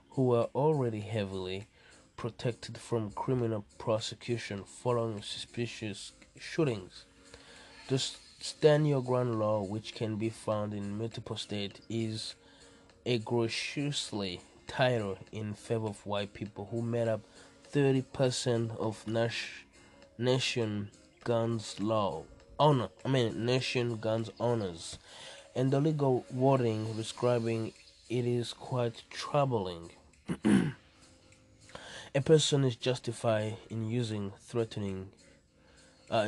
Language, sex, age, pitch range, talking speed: English, male, 20-39, 105-125 Hz, 105 wpm